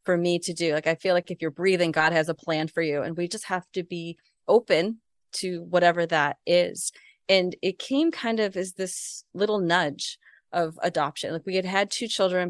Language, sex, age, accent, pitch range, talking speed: English, female, 30-49, American, 165-215 Hz, 215 wpm